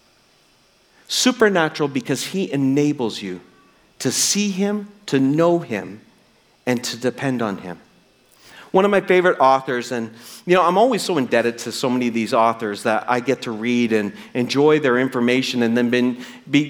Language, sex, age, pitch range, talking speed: English, male, 40-59, 125-185 Hz, 165 wpm